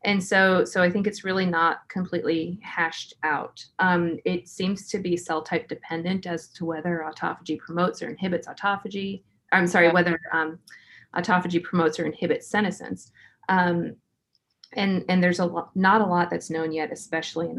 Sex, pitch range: female, 160-180 Hz